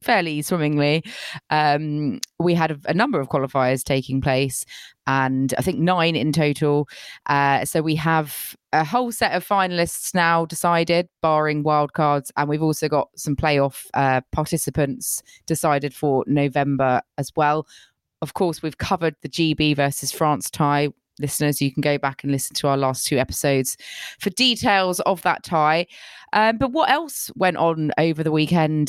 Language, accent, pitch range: English, British, 145-185 Hz